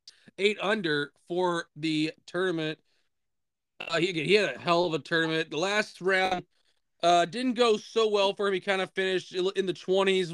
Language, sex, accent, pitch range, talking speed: English, male, American, 150-190 Hz, 180 wpm